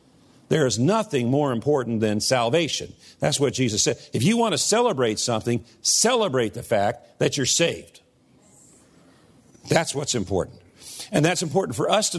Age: 50-69